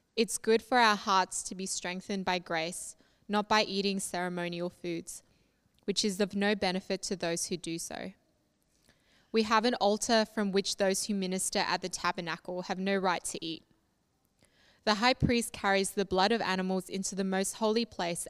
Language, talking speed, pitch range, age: English, 180 wpm, 180-215 Hz, 20-39